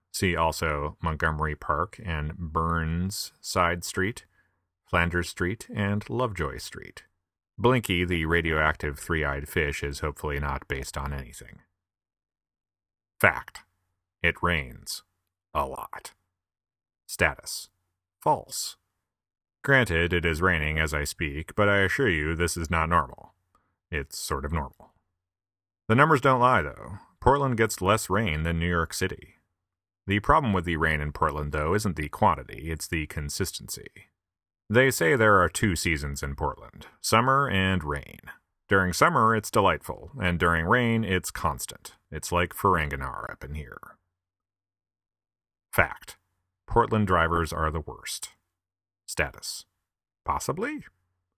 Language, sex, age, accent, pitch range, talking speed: English, male, 30-49, American, 80-95 Hz, 130 wpm